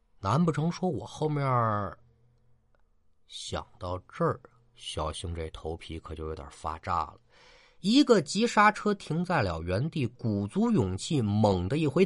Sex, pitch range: male, 95-130 Hz